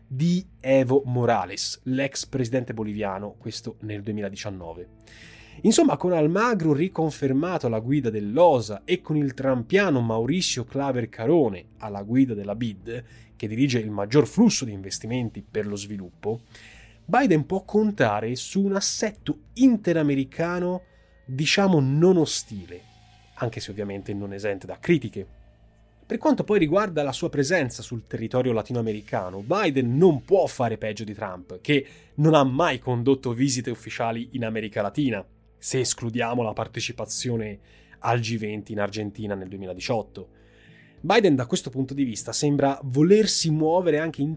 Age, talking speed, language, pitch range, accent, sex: 20-39, 140 wpm, Italian, 110-145 Hz, native, male